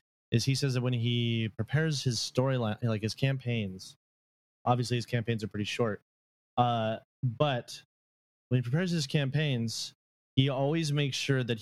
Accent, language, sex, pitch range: American, English, male, 105-130 Hz